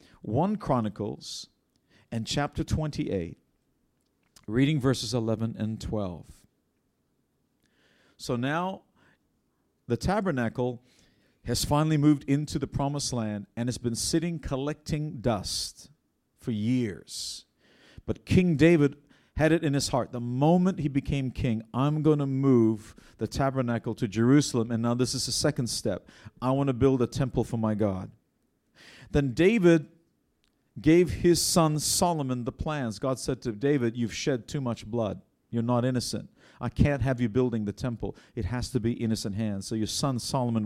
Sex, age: male, 50-69